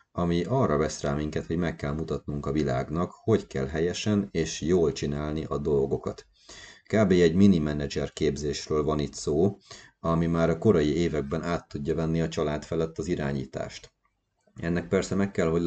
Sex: male